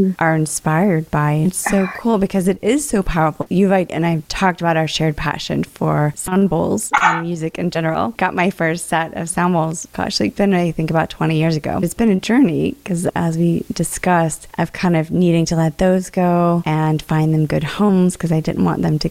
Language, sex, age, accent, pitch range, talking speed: English, female, 20-39, American, 160-185 Hz, 220 wpm